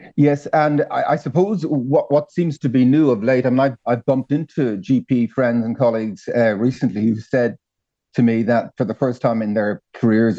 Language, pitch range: English, 100-125 Hz